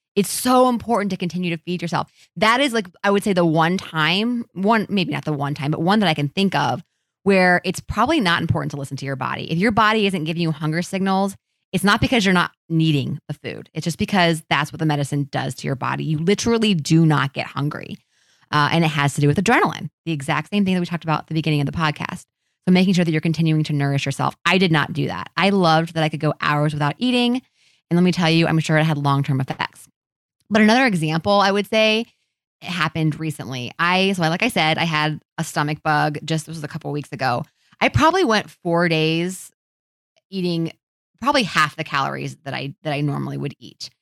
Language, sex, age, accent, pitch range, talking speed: English, female, 20-39, American, 150-185 Hz, 235 wpm